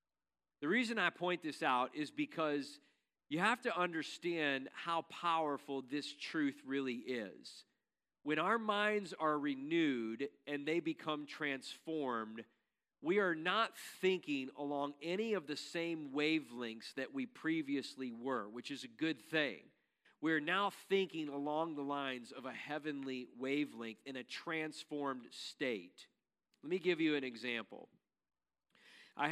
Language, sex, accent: English, male, American